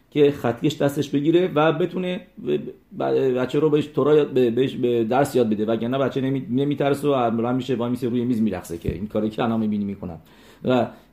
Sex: male